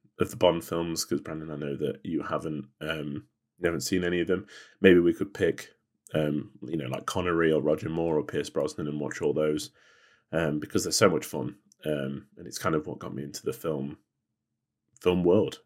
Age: 30-49